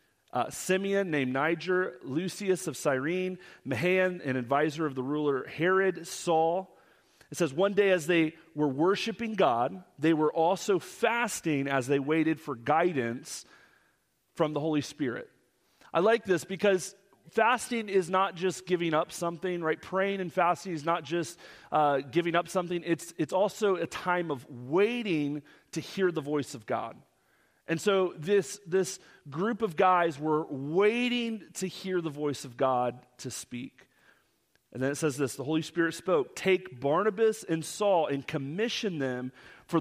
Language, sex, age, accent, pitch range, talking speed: English, male, 40-59, American, 155-195 Hz, 160 wpm